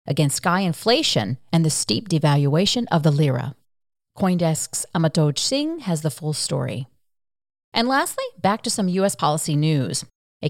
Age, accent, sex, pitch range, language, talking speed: 40-59, American, female, 150-220 Hz, English, 150 wpm